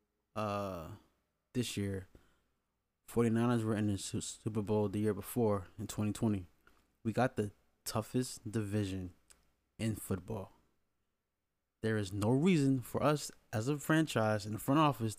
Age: 20-39